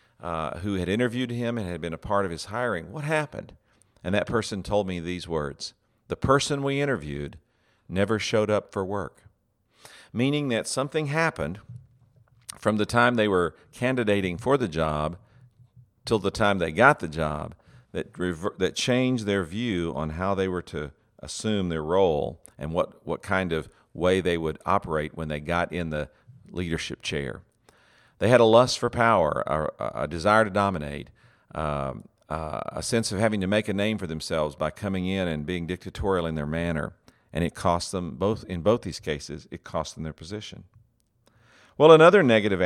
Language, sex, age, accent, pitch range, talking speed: English, male, 50-69, American, 85-115 Hz, 180 wpm